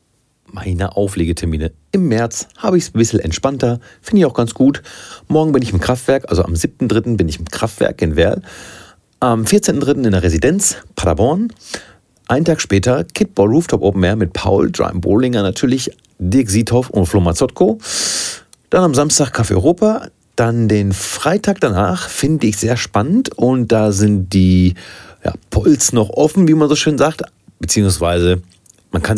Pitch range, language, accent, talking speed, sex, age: 95-135 Hz, German, German, 165 wpm, male, 40-59